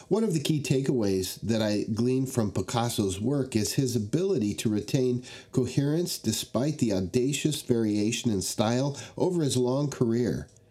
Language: English